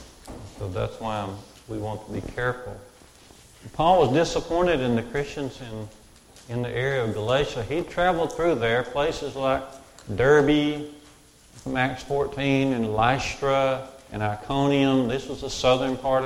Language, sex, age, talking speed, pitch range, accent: English, male, 50-69, 145 wpm, 115-145 Hz, American